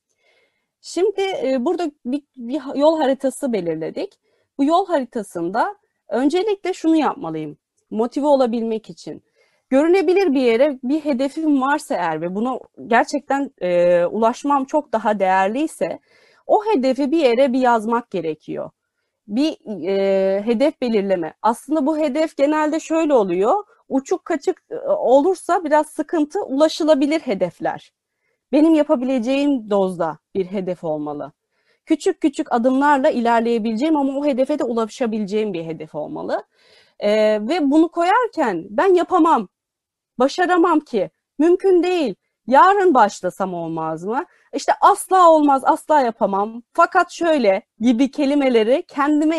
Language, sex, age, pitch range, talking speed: Turkish, female, 30-49, 225-320 Hz, 115 wpm